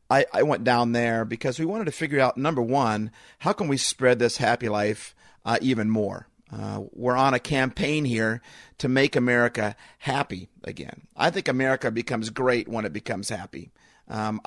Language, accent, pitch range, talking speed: English, American, 115-135 Hz, 180 wpm